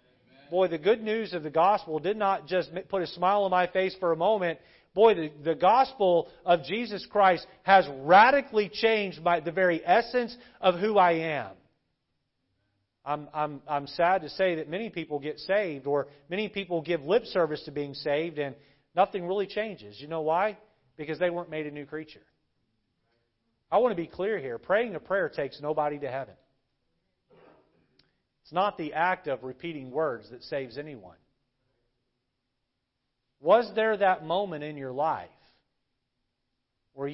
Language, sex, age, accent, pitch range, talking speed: English, male, 40-59, American, 140-195 Hz, 165 wpm